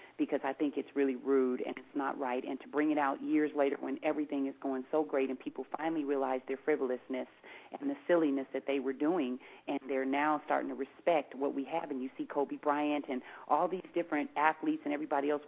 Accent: American